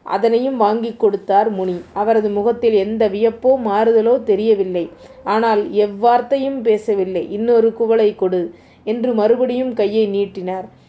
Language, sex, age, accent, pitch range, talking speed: Tamil, female, 30-49, native, 205-245 Hz, 110 wpm